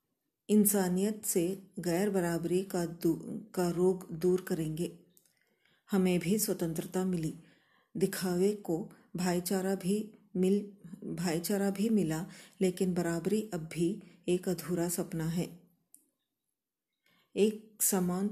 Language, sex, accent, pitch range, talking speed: Kannada, female, native, 175-200 Hz, 100 wpm